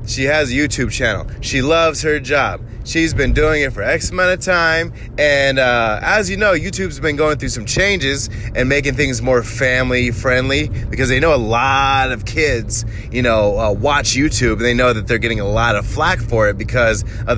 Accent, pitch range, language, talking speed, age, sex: American, 115-150 Hz, English, 210 wpm, 20-39, male